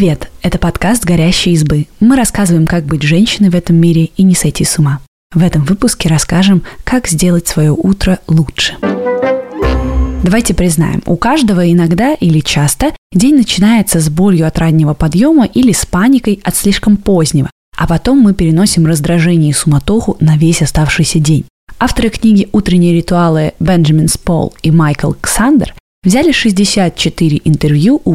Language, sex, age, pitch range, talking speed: Russian, female, 20-39, 155-195 Hz, 150 wpm